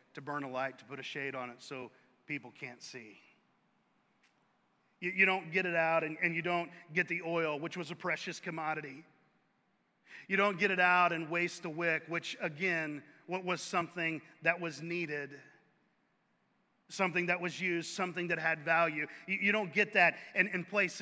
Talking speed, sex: 185 wpm, male